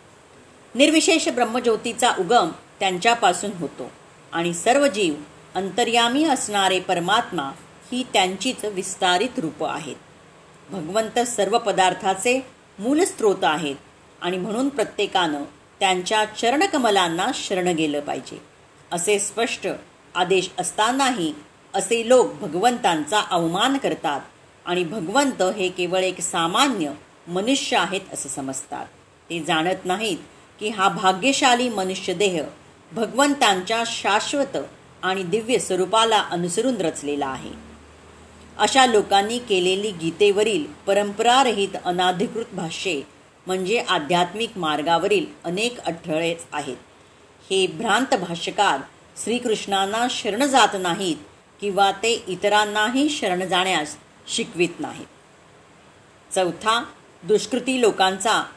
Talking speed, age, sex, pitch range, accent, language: 95 wpm, 40-59, female, 180-235 Hz, native, Marathi